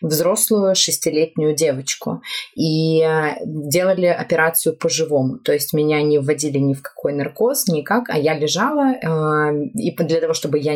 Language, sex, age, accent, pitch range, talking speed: Russian, female, 20-39, native, 150-195 Hz, 150 wpm